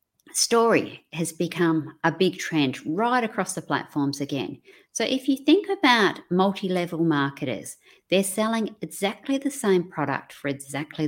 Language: English